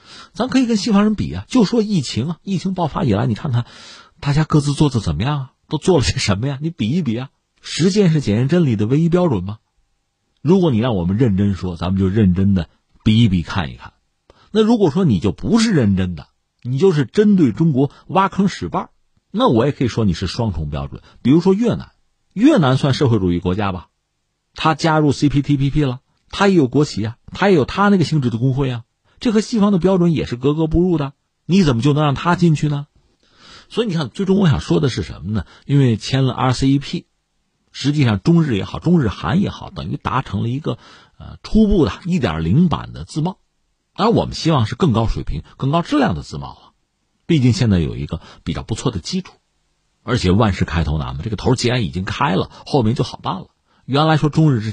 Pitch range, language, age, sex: 105-165 Hz, Chinese, 50-69, male